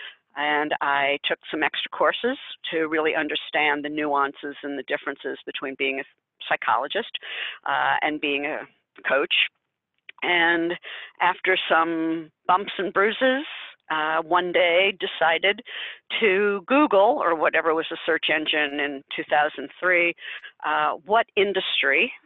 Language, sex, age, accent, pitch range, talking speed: English, female, 50-69, American, 145-185 Hz, 125 wpm